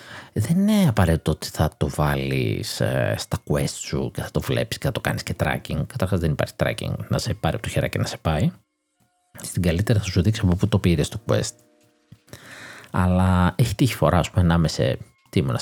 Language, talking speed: Greek, 210 wpm